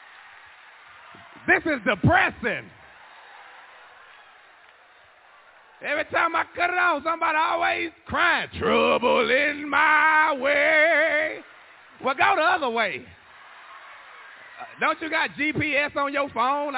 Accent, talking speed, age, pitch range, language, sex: American, 105 wpm, 30-49, 180-300 Hz, English, male